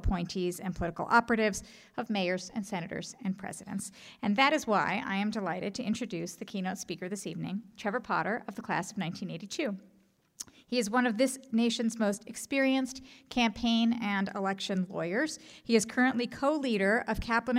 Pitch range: 190-240 Hz